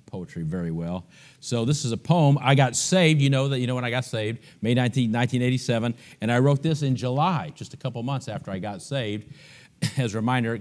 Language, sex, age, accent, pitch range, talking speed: English, male, 50-69, American, 120-150 Hz, 225 wpm